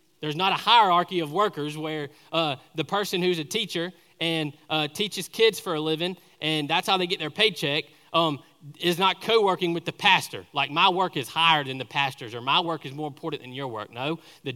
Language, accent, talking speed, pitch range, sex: English, American, 220 wpm, 150-180 Hz, male